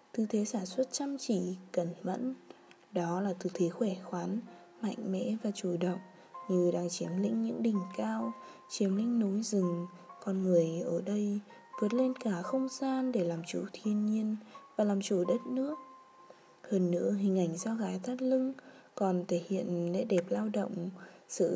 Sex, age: female, 20-39